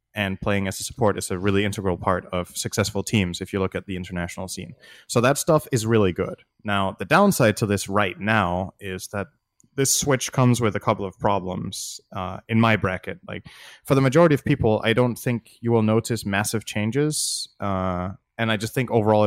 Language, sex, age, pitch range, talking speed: English, male, 20-39, 100-125 Hz, 210 wpm